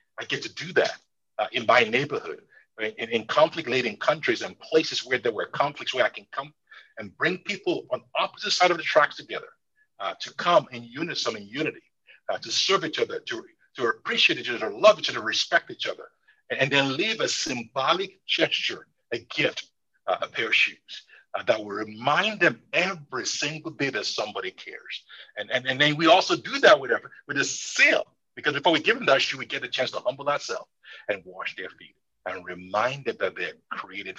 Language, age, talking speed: English, 50-69, 210 wpm